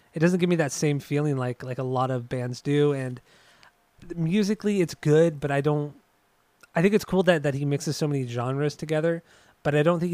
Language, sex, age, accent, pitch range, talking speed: English, male, 20-39, American, 130-160 Hz, 220 wpm